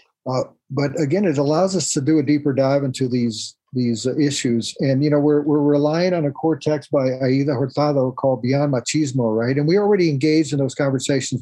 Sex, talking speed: male, 210 wpm